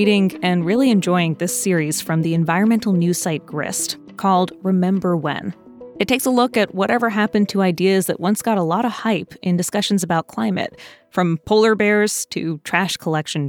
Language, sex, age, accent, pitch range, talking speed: English, female, 20-39, American, 175-225 Hz, 180 wpm